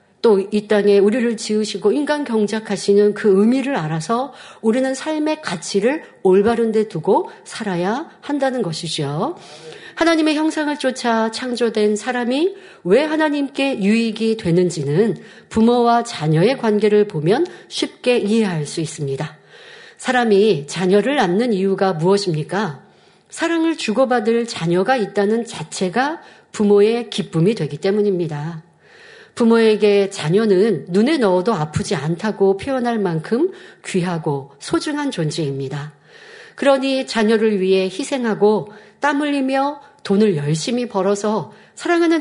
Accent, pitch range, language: native, 190-265 Hz, Korean